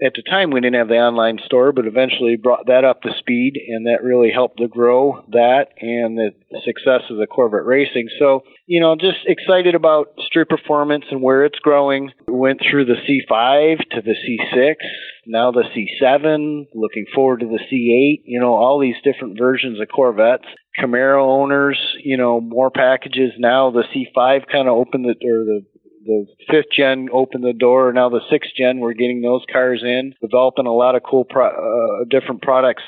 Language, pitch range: English, 120-140 Hz